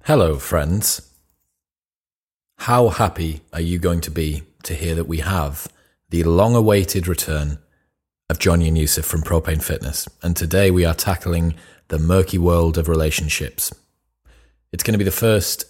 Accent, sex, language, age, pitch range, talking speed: British, male, English, 30-49, 80-95 Hz, 155 wpm